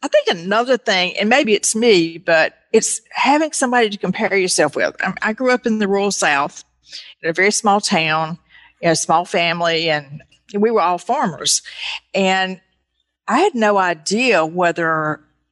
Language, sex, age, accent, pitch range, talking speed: English, female, 50-69, American, 165-210 Hz, 165 wpm